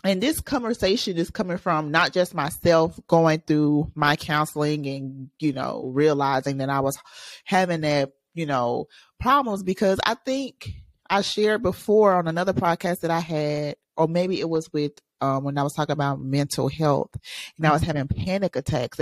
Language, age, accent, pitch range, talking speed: English, 30-49, American, 150-195 Hz, 175 wpm